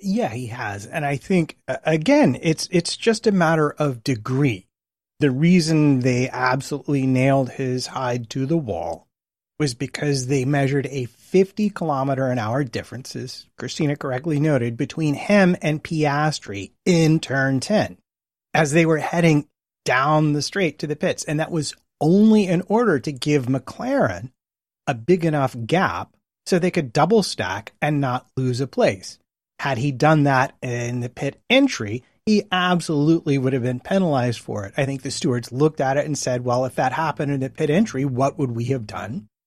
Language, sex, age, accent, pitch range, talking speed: English, male, 30-49, American, 125-160 Hz, 175 wpm